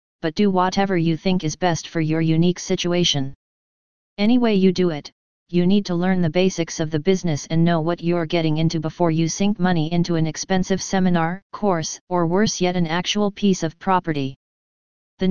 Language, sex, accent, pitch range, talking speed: English, female, American, 165-185 Hz, 190 wpm